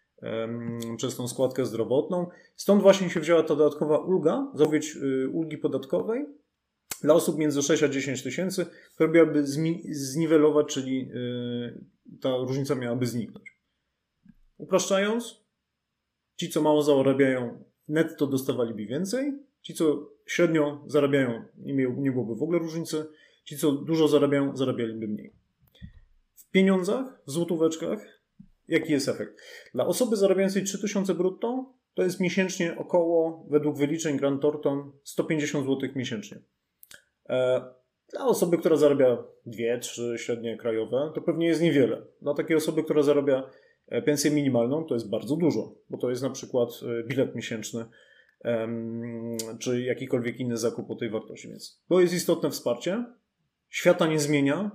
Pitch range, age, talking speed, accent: 125-170 Hz, 30-49, 135 wpm, native